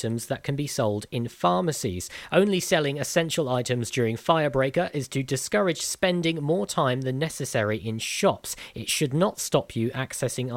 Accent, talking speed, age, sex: British, 165 wpm, 40-59, male